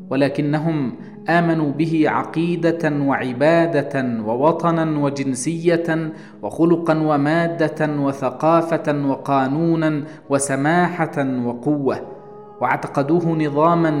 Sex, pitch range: male, 145-170 Hz